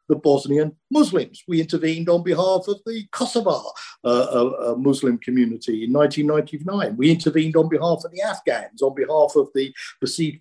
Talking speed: 160 wpm